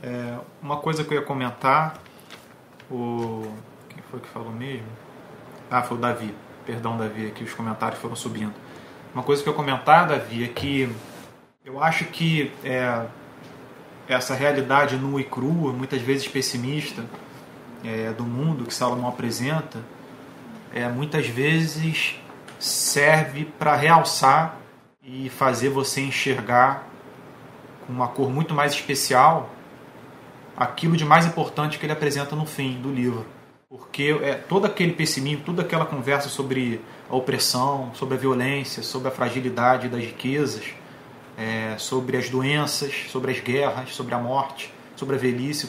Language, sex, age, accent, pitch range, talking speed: Portuguese, male, 30-49, Brazilian, 125-150 Hz, 145 wpm